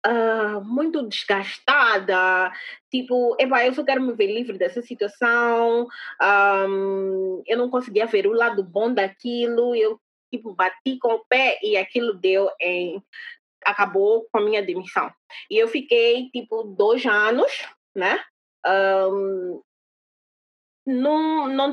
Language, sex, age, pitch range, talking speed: Portuguese, female, 20-39, 205-265 Hz, 125 wpm